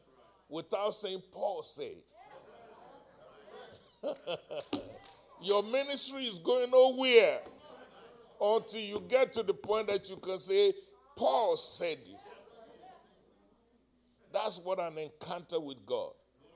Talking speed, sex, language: 100 wpm, male, English